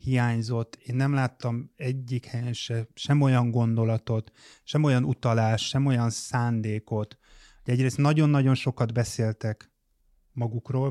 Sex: male